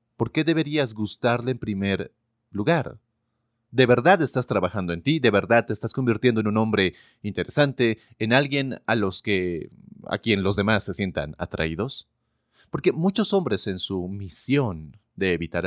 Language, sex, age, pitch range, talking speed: Spanish, male, 30-49, 95-135 Hz, 155 wpm